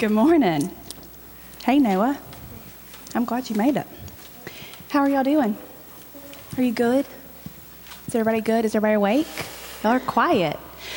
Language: English